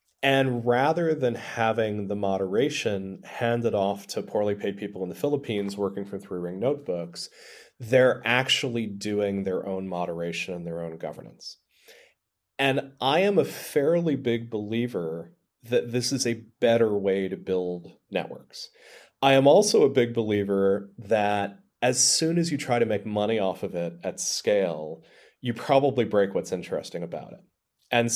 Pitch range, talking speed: 100-130 Hz, 155 wpm